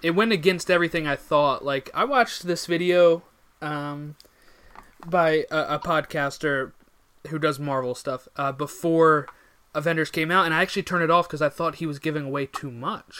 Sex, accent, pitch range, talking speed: male, American, 145-180 Hz, 180 wpm